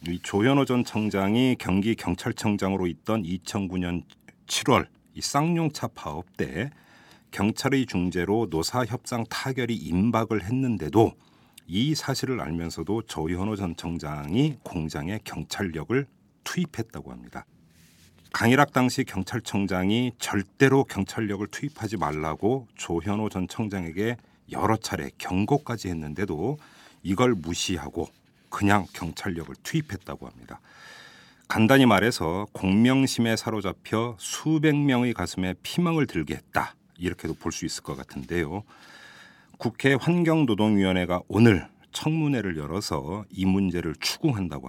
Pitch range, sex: 90-120 Hz, male